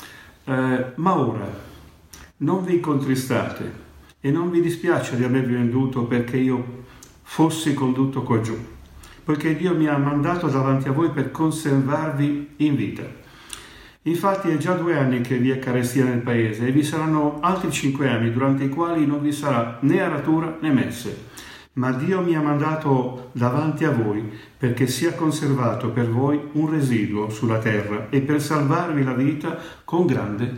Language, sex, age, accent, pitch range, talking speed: Italian, male, 50-69, native, 120-150 Hz, 160 wpm